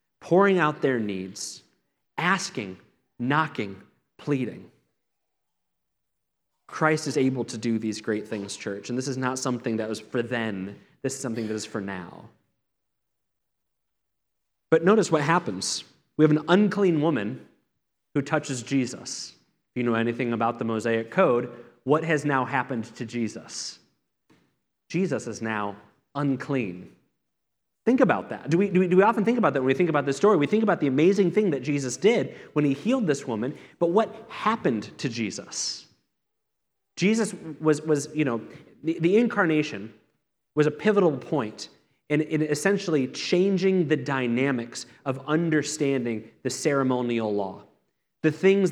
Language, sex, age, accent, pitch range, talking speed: English, male, 30-49, American, 115-160 Hz, 155 wpm